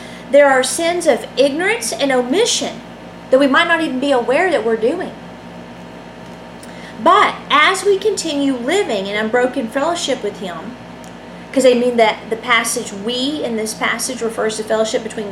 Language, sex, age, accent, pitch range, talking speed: English, female, 40-59, American, 220-300 Hz, 160 wpm